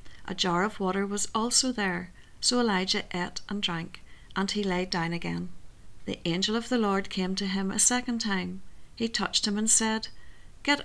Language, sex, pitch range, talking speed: English, female, 180-220 Hz, 190 wpm